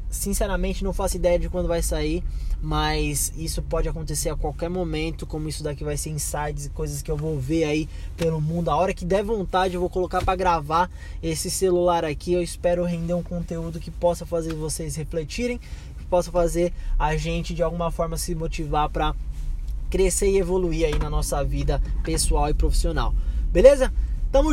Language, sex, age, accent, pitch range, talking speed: Portuguese, male, 20-39, Brazilian, 155-185 Hz, 185 wpm